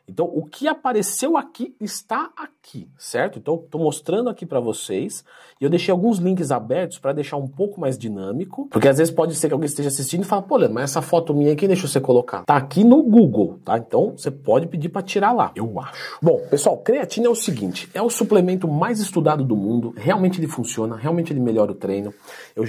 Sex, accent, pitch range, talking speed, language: male, Brazilian, 120-180 Hz, 220 wpm, Portuguese